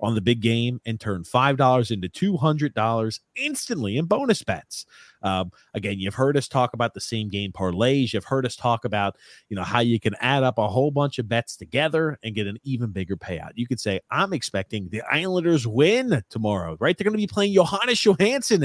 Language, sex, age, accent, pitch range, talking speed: English, male, 30-49, American, 100-150 Hz, 215 wpm